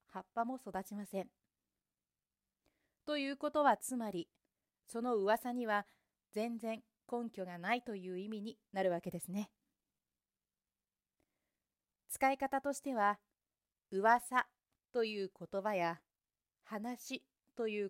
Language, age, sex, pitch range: Japanese, 40-59, female, 190-240 Hz